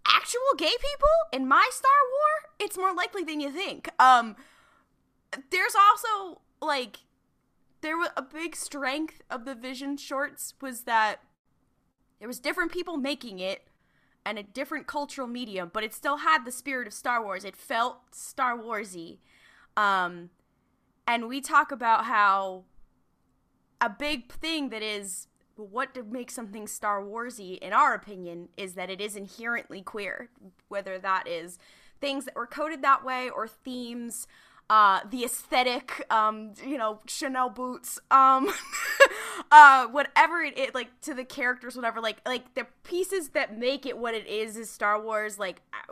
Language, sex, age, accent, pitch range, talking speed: English, female, 20-39, American, 210-285 Hz, 155 wpm